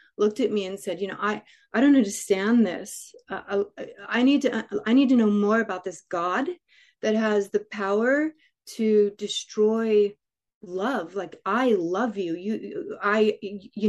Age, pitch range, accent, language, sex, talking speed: 30-49, 205-250 Hz, American, English, female, 175 wpm